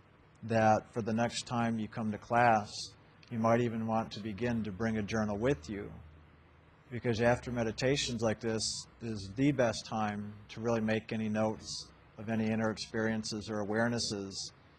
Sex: male